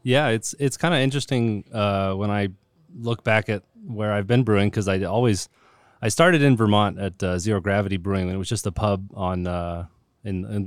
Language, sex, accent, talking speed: English, male, American, 210 wpm